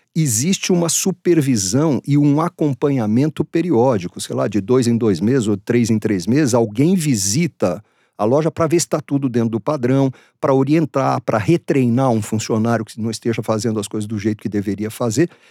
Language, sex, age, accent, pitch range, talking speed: Portuguese, male, 50-69, Brazilian, 115-160 Hz, 185 wpm